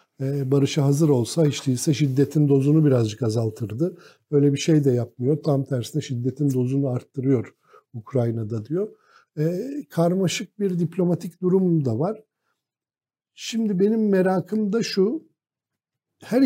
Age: 60-79